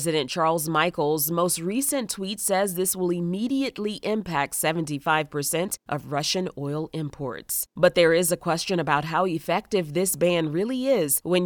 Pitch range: 155-195 Hz